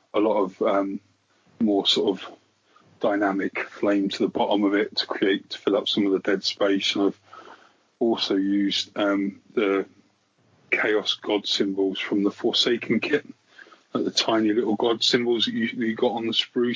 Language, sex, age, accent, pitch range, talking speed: English, male, 30-49, British, 100-115 Hz, 185 wpm